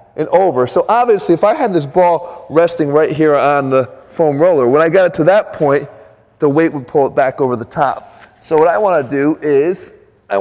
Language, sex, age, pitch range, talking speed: English, male, 30-49, 130-185 Hz, 225 wpm